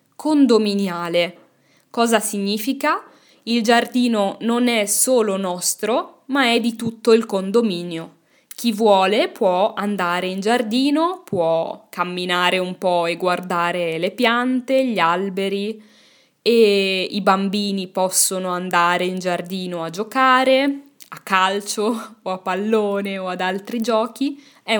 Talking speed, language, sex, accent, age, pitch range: 120 wpm, Italian, female, native, 10-29, 185-255 Hz